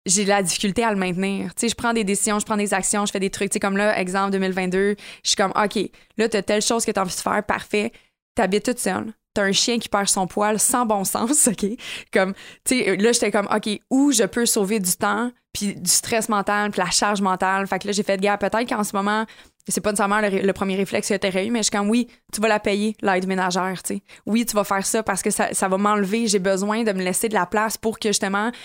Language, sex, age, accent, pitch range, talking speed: French, female, 20-39, Canadian, 190-215 Hz, 285 wpm